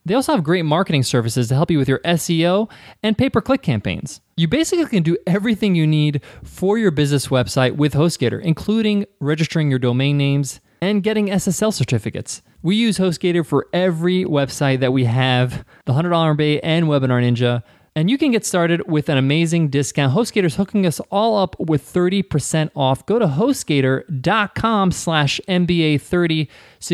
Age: 20-39